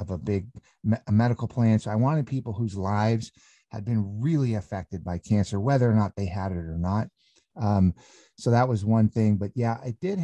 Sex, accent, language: male, American, English